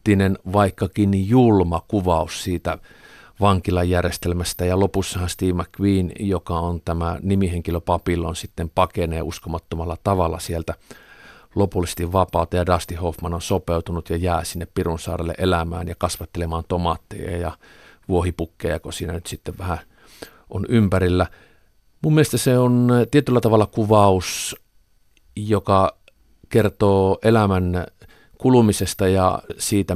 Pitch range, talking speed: 90-105 Hz, 110 wpm